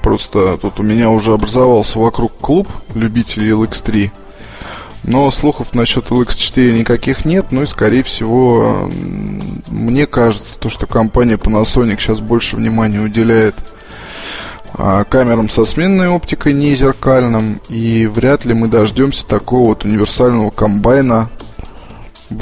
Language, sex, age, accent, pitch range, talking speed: Russian, male, 20-39, native, 110-130 Hz, 125 wpm